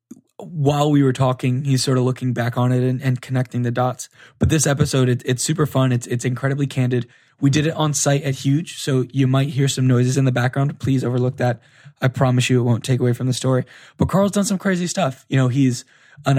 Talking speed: 240 wpm